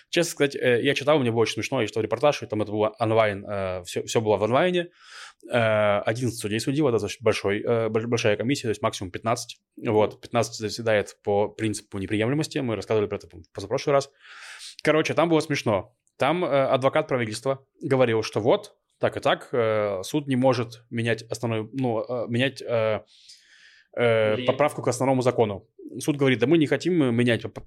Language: Russian